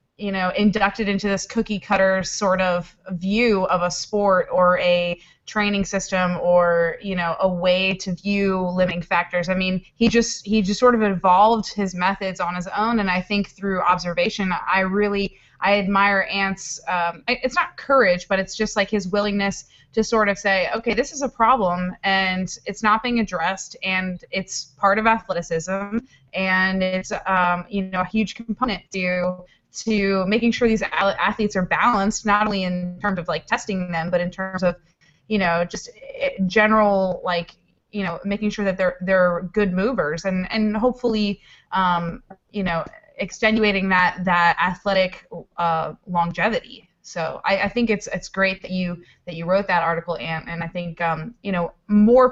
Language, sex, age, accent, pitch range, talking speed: English, female, 20-39, American, 180-210 Hz, 180 wpm